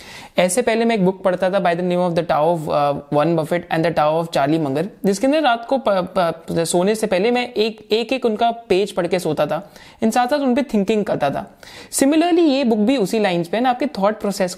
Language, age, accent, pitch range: Hindi, 20-39, native, 170-230 Hz